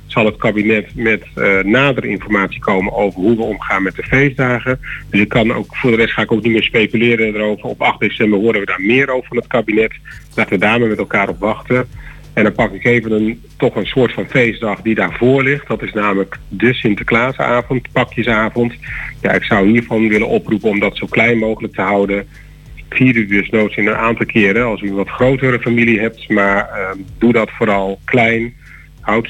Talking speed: 205 wpm